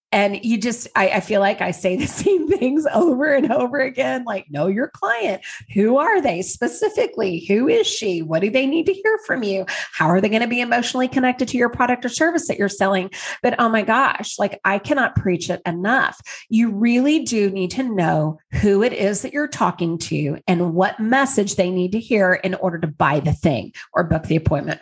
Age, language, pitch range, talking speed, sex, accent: 30-49, English, 185-250 Hz, 220 wpm, female, American